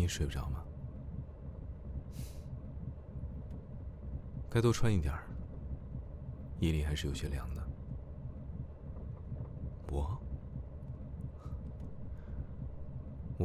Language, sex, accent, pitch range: Chinese, male, native, 70-85 Hz